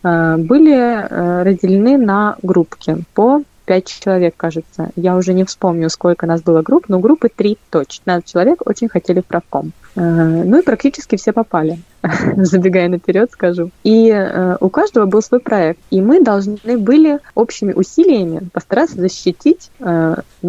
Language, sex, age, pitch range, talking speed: Russian, female, 20-39, 175-220 Hz, 135 wpm